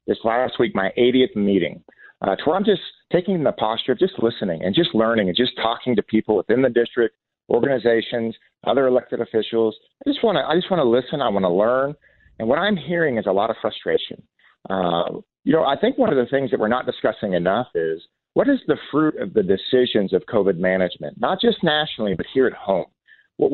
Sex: male